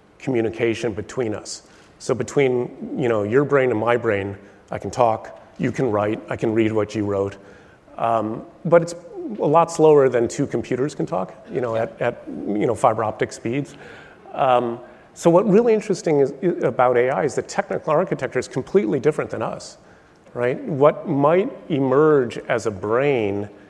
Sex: male